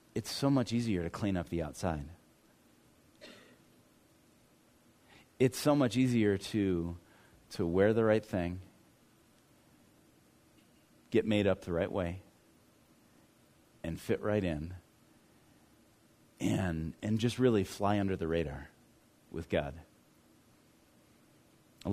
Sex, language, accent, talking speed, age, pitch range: male, English, American, 110 wpm, 30-49, 95-130 Hz